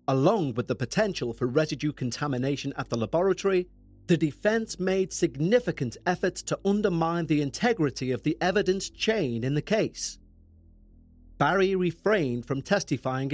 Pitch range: 110-175 Hz